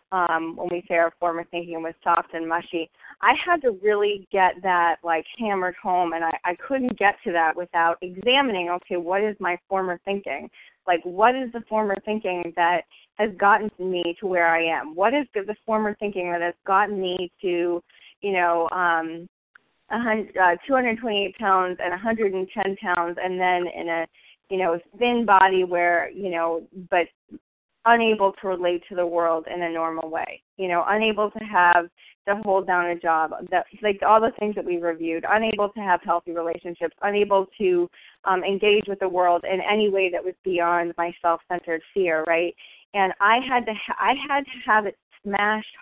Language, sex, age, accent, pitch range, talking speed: English, female, 20-39, American, 175-210 Hz, 185 wpm